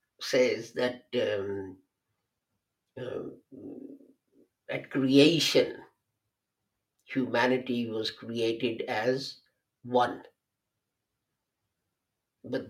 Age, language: 60-79, English